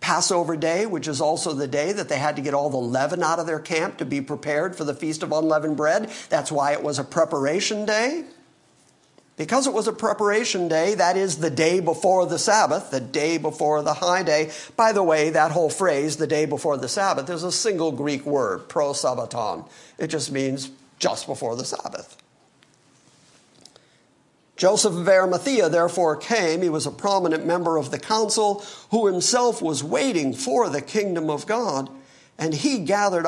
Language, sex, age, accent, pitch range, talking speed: English, male, 50-69, American, 150-200 Hz, 185 wpm